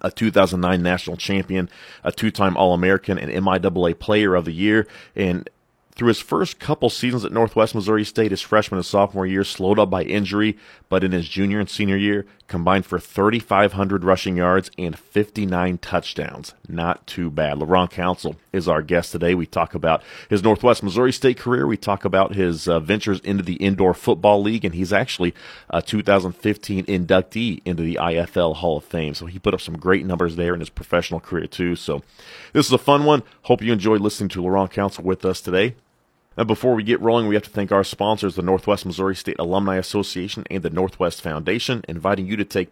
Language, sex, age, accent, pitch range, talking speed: English, male, 30-49, American, 90-105 Hz, 195 wpm